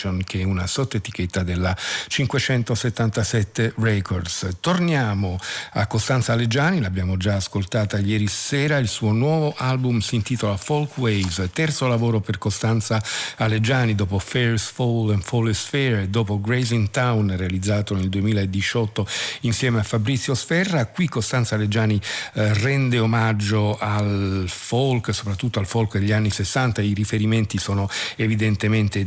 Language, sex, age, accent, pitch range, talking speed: Italian, male, 50-69, native, 100-120 Hz, 135 wpm